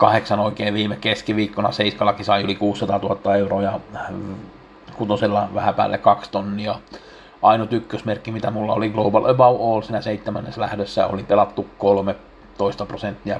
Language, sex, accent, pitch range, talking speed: Finnish, male, native, 100-110 Hz, 145 wpm